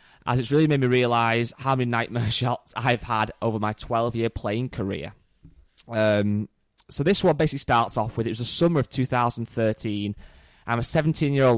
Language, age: English, 20-39